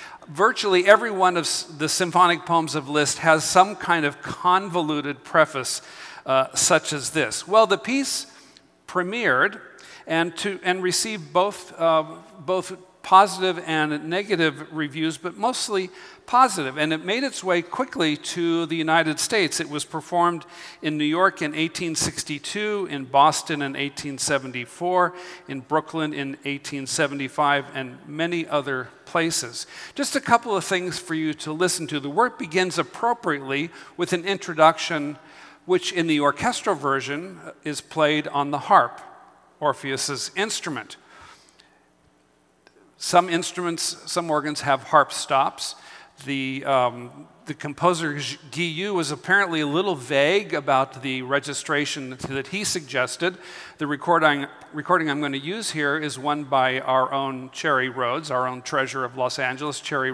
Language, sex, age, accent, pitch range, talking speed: English, male, 50-69, American, 140-180 Hz, 140 wpm